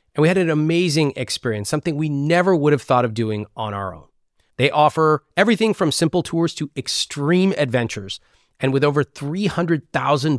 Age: 30-49